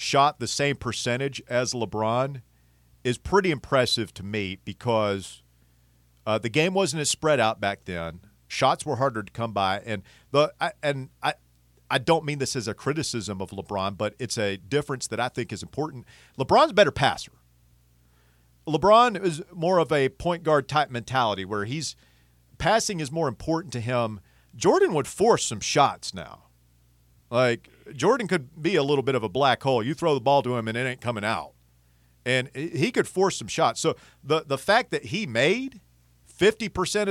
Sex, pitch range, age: male, 95-155 Hz, 40-59